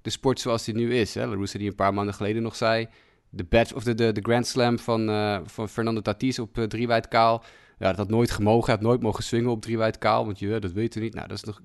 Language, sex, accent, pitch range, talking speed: Dutch, male, Dutch, 105-120 Hz, 230 wpm